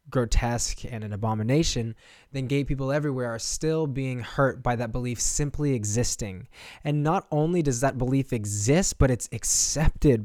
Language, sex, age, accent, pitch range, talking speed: English, male, 20-39, American, 110-145 Hz, 160 wpm